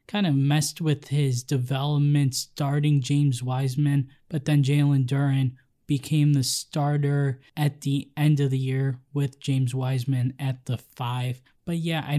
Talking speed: 155 wpm